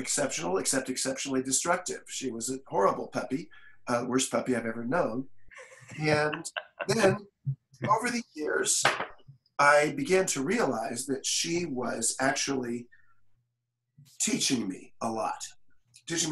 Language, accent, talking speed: English, American, 120 wpm